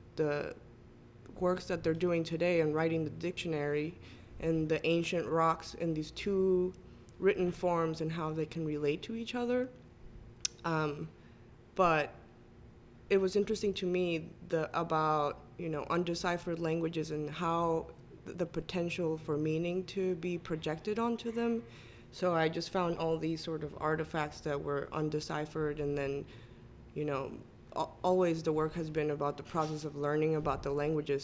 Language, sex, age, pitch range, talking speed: English, female, 20-39, 150-175 Hz, 155 wpm